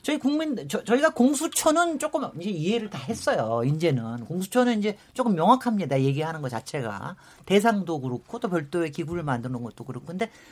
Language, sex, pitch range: Korean, male, 160-255 Hz